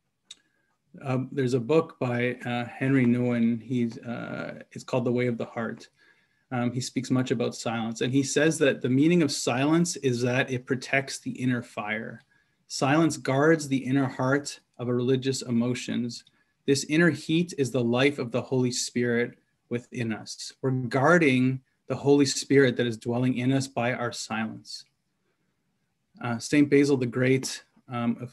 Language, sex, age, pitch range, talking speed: English, male, 20-39, 120-140 Hz, 165 wpm